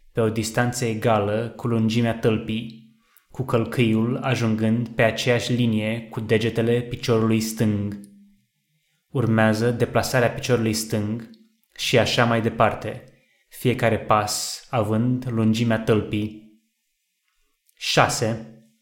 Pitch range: 110-125 Hz